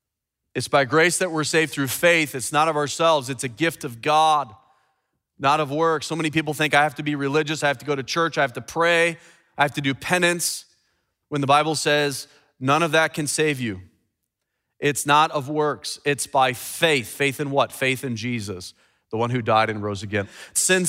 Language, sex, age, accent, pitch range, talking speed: English, male, 40-59, American, 130-170 Hz, 215 wpm